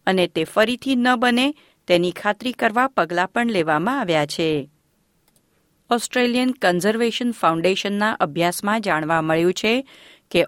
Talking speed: 120 wpm